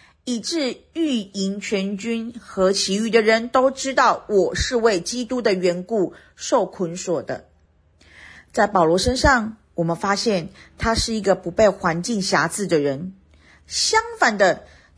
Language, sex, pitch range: Chinese, female, 170-235 Hz